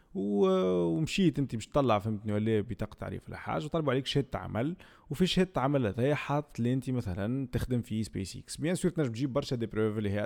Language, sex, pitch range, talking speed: Arabic, male, 110-140 Hz, 200 wpm